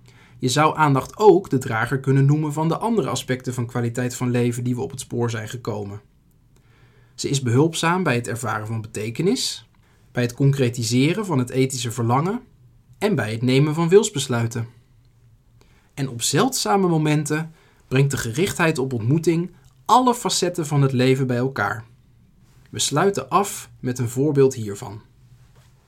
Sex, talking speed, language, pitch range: male, 155 wpm, Dutch, 120-150 Hz